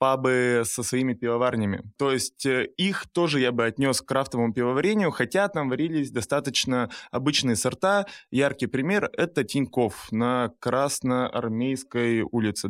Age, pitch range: 20-39, 115-140 Hz